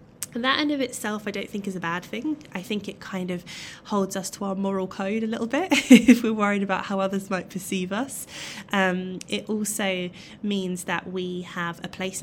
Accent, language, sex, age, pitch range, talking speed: British, English, female, 20-39, 180-230 Hz, 215 wpm